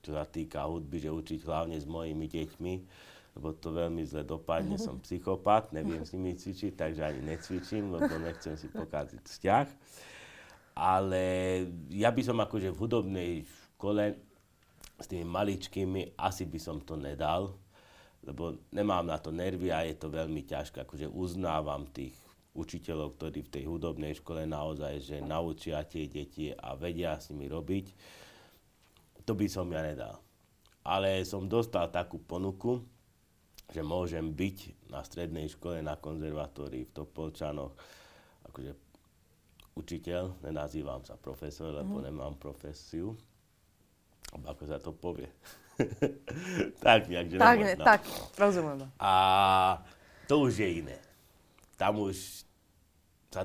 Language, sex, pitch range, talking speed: Slovak, male, 75-95 Hz, 135 wpm